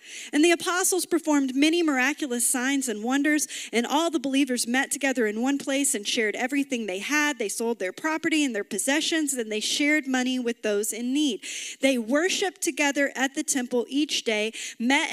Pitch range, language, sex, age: 220-300 Hz, English, female, 40-59